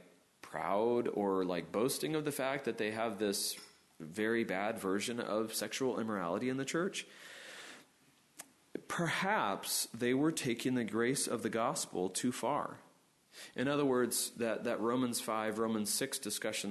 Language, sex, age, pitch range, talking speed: English, male, 30-49, 105-135 Hz, 145 wpm